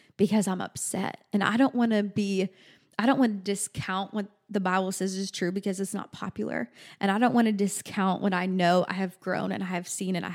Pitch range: 195-230 Hz